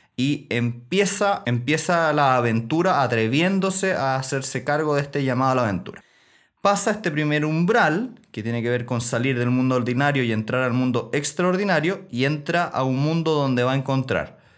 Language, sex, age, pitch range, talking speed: Spanish, male, 30-49, 125-160 Hz, 175 wpm